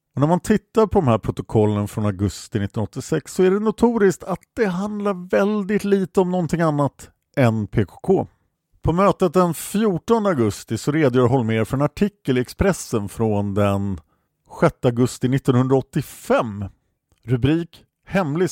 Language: Swedish